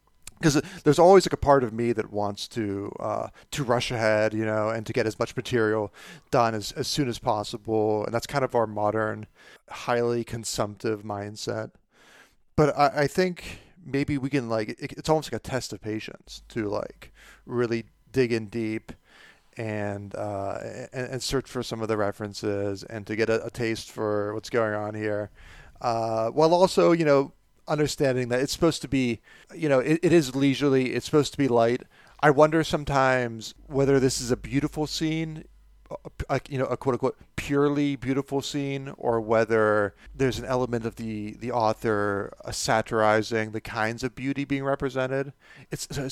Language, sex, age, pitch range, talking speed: English, male, 40-59, 110-140 Hz, 180 wpm